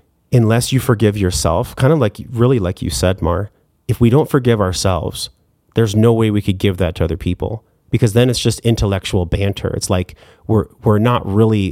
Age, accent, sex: 30-49, American, male